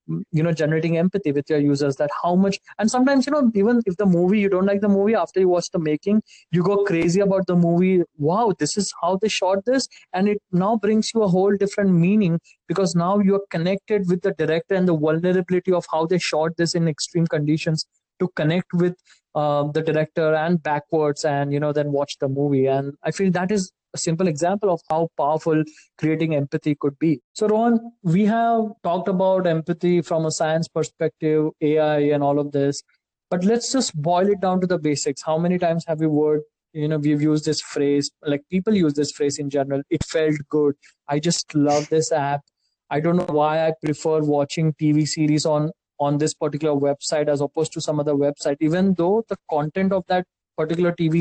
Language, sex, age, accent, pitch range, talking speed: English, male, 20-39, Indian, 150-185 Hz, 210 wpm